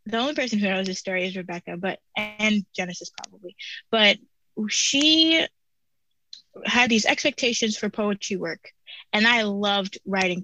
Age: 20-39